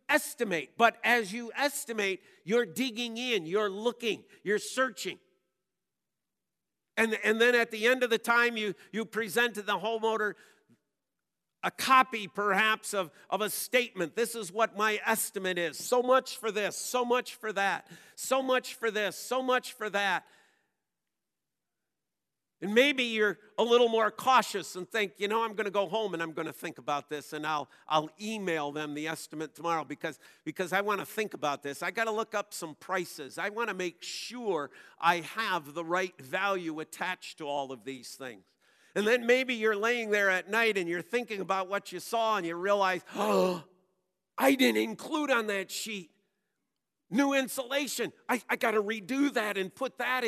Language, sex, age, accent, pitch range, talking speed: English, male, 50-69, American, 185-240 Hz, 185 wpm